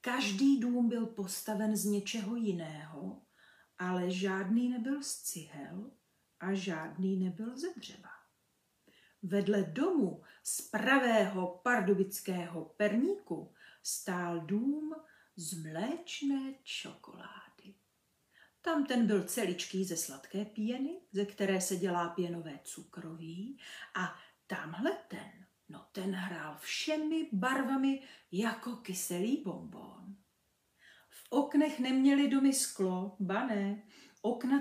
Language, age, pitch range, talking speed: Czech, 50-69, 190-265 Hz, 100 wpm